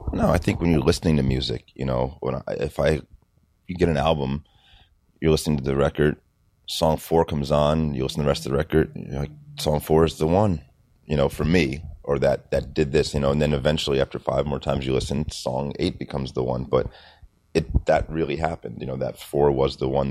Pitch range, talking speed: 70-80 Hz, 235 wpm